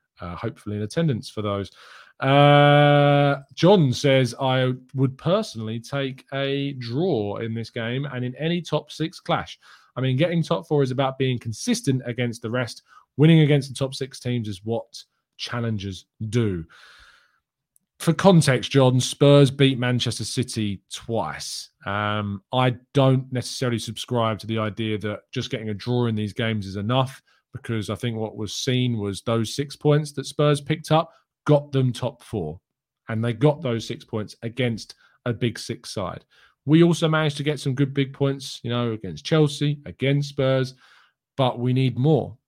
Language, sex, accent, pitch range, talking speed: English, male, British, 115-140 Hz, 170 wpm